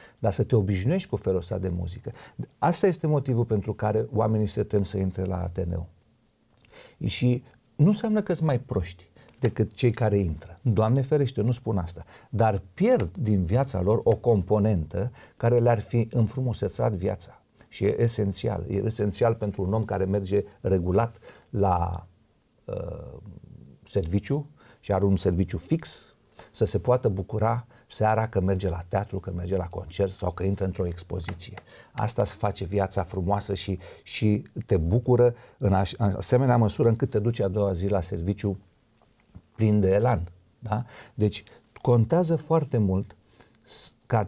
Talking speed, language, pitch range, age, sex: 155 wpm, Romanian, 95-120 Hz, 50-69, male